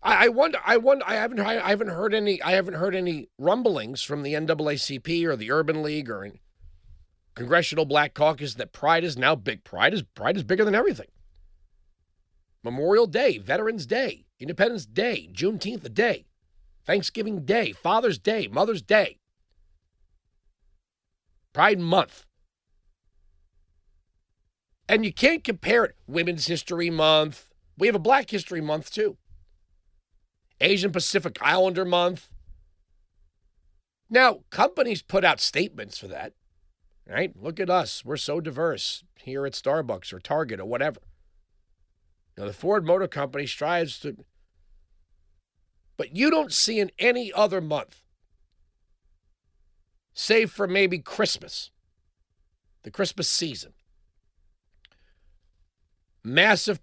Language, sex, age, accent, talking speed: English, male, 40-59, American, 125 wpm